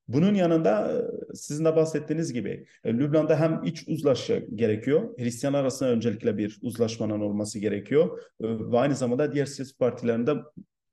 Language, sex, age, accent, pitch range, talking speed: Turkish, male, 40-59, native, 130-160 Hz, 130 wpm